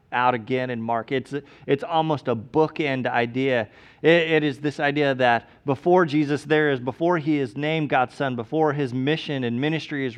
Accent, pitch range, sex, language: American, 140-170 Hz, male, English